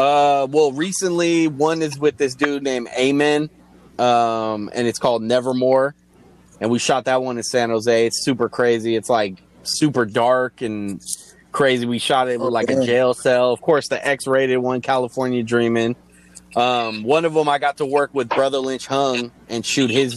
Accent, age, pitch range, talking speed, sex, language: American, 20-39, 110-135 Hz, 185 wpm, male, English